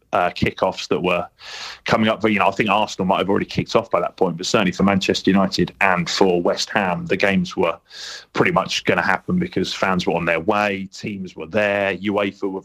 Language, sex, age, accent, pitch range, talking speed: English, male, 30-49, British, 95-125 Hz, 225 wpm